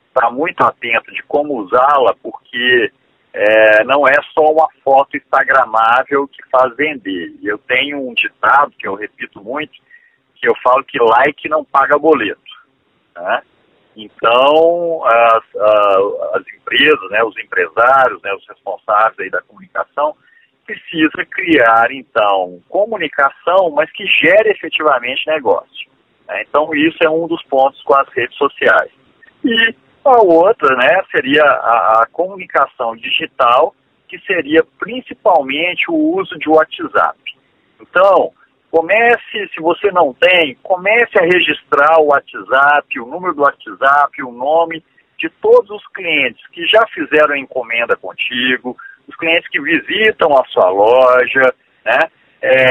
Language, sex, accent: Portuguese, male, Brazilian